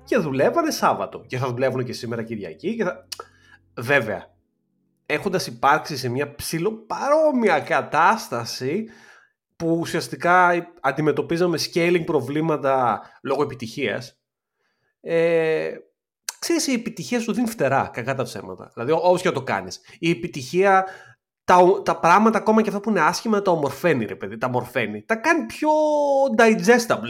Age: 30-49